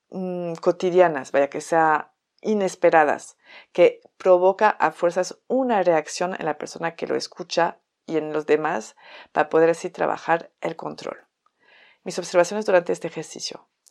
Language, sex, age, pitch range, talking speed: Spanish, female, 50-69, 165-195 Hz, 140 wpm